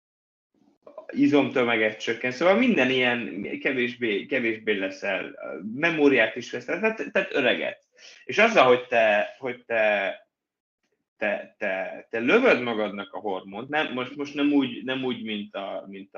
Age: 20-39